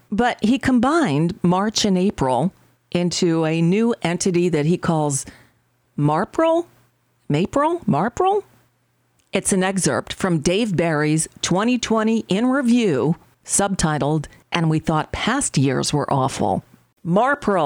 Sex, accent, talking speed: female, American, 115 wpm